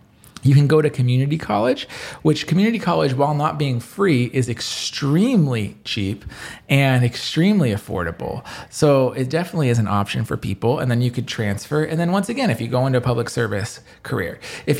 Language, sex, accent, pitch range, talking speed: English, male, American, 115-155 Hz, 185 wpm